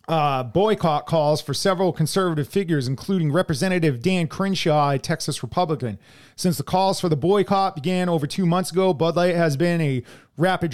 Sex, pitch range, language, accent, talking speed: male, 140-175 Hz, English, American, 175 wpm